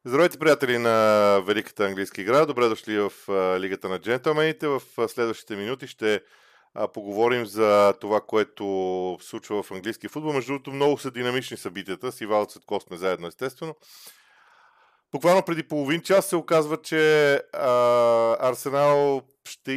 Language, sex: Bulgarian, male